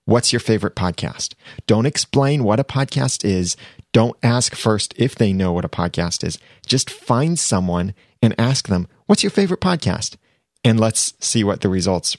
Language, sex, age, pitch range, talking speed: English, male, 30-49, 95-125 Hz, 175 wpm